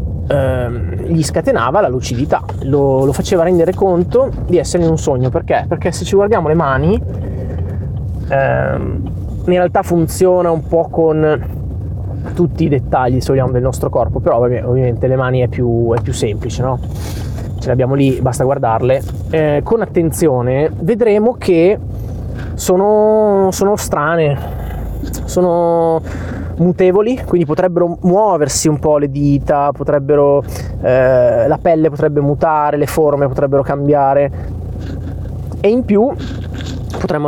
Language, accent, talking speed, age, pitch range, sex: Italian, native, 130 wpm, 20-39, 115-170 Hz, male